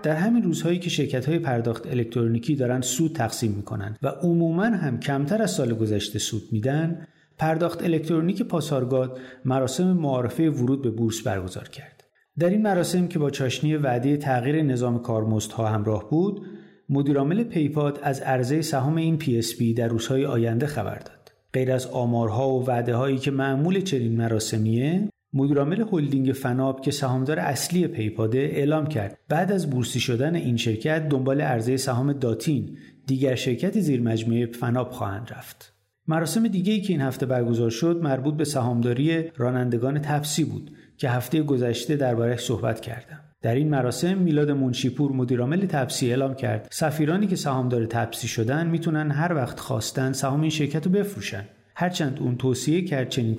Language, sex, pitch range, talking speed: Persian, male, 120-155 Hz, 155 wpm